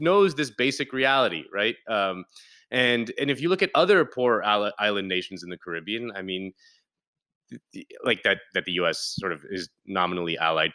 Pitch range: 95-125 Hz